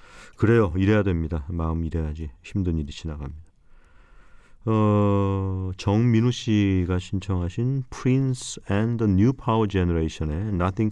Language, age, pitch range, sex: Korean, 40-59, 85-110 Hz, male